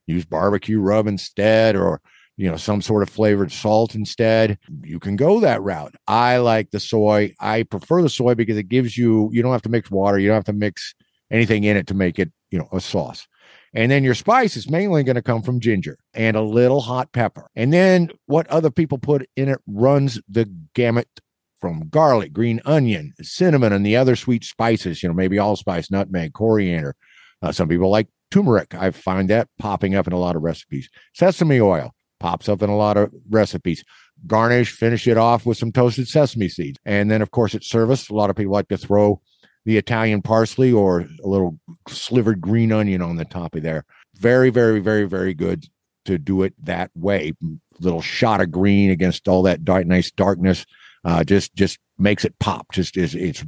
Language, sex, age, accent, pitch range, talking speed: English, male, 50-69, American, 95-120 Hz, 205 wpm